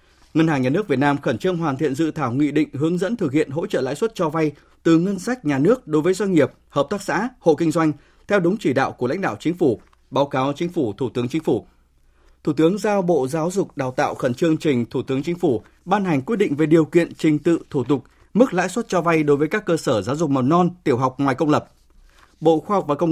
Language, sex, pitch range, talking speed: Vietnamese, male, 140-175 Hz, 275 wpm